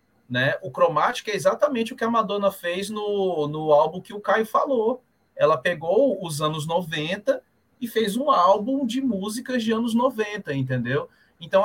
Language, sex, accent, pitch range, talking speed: Portuguese, male, Brazilian, 140-200 Hz, 170 wpm